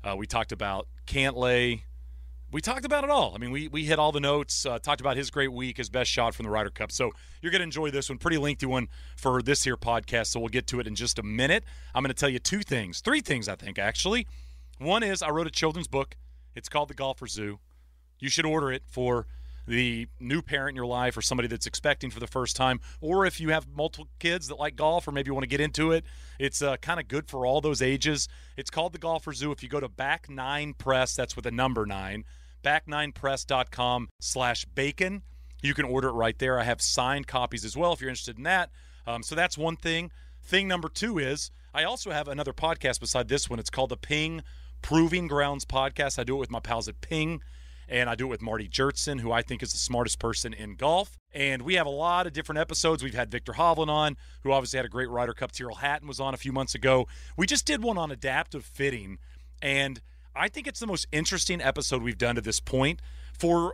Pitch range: 115-150 Hz